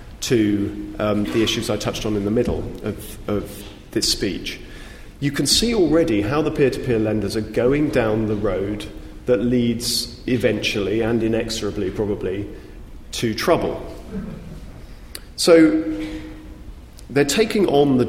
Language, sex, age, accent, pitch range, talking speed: English, male, 40-59, British, 105-135 Hz, 135 wpm